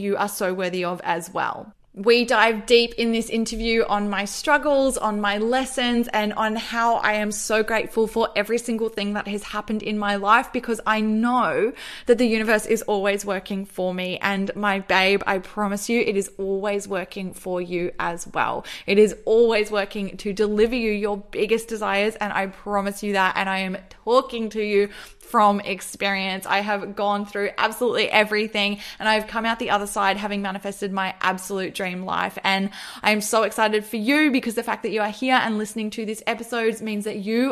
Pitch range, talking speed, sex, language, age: 200-235 Hz, 200 wpm, female, English, 20-39